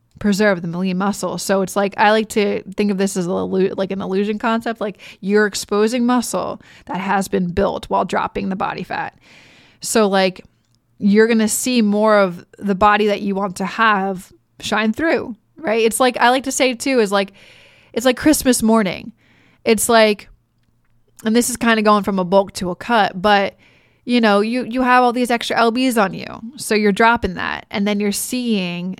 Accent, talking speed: American, 200 wpm